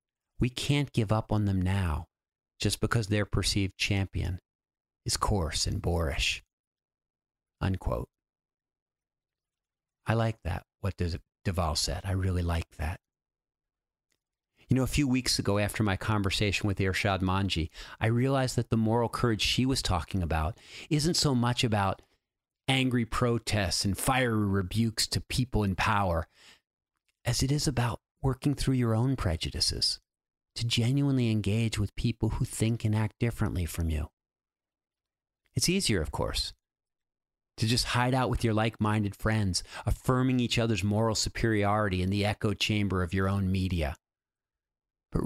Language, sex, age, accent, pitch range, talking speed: English, male, 50-69, American, 95-120 Hz, 145 wpm